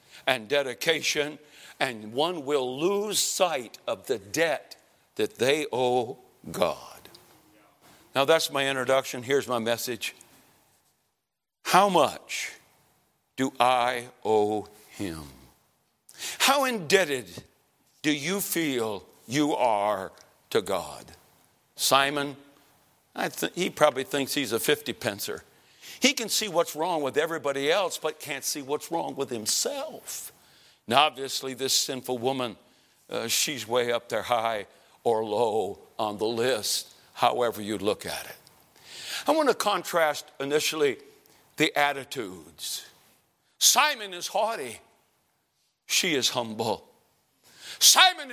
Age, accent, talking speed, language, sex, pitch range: 60-79, American, 120 wpm, English, male, 125-155 Hz